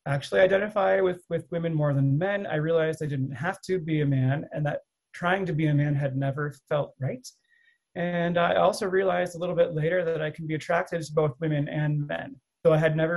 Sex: male